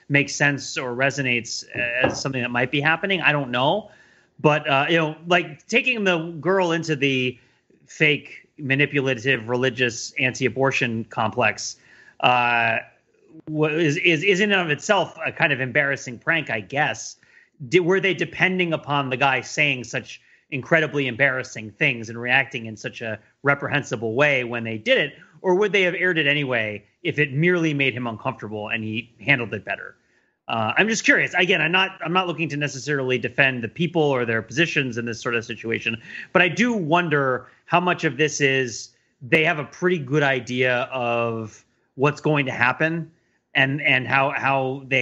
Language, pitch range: English, 125-160 Hz